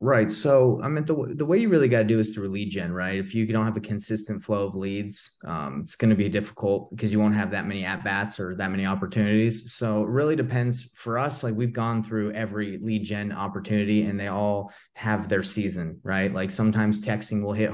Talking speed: 235 wpm